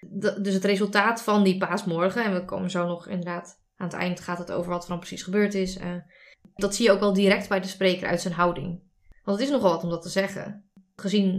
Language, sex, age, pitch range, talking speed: Dutch, female, 20-39, 185-205 Hz, 255 wpm